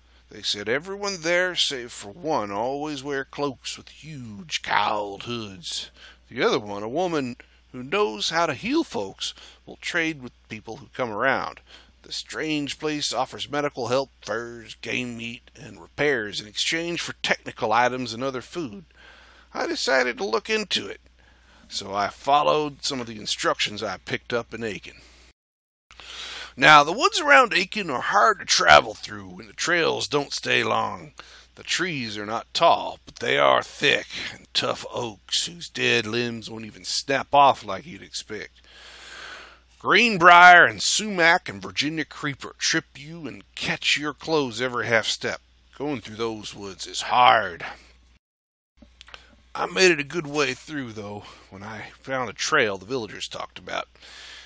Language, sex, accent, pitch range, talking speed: English, male, American, 110-155 Hz, 160 wpm